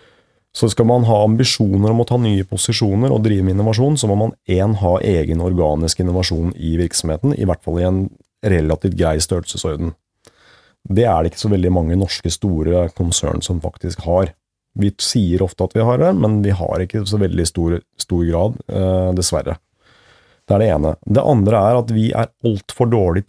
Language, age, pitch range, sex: English, 30-49, 90-120 Hz, male